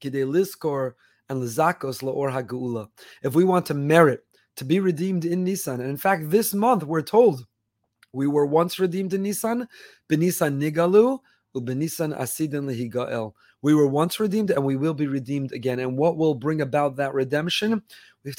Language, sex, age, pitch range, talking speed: English, male, 30-49, 135-165 Hz, 140 wpm